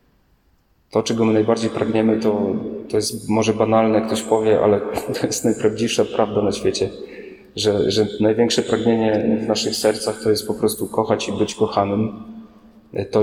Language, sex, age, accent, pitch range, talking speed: Polish, male, 30-49, native, 110-125 Hz, 165 wpm